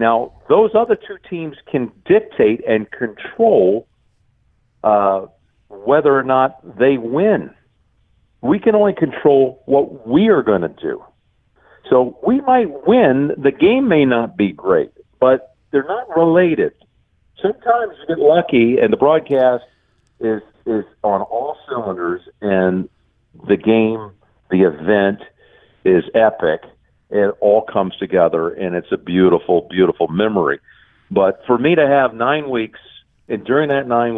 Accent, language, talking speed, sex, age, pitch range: American, English, 140 wpm, male, 50-69, 105-140 Hz